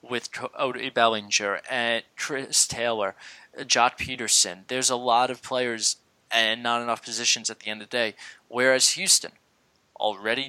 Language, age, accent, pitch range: English, 20-39, American, 115-140 Hz